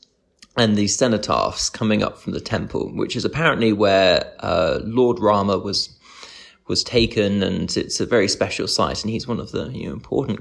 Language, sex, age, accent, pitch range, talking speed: English, male, 20-39, British, 95-120 Hz, 175 wpm